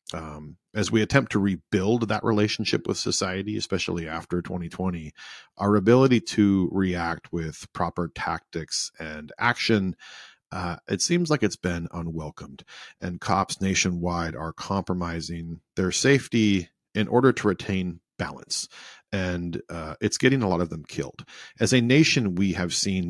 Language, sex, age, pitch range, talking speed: English, male, 40-59, 85-105 Hz, 145 wpm